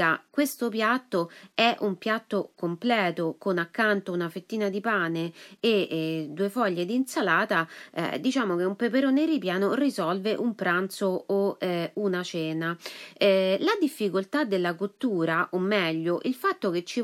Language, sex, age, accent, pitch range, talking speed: Italian, female, 30-49, native, 180-255 Hz, 150 wpm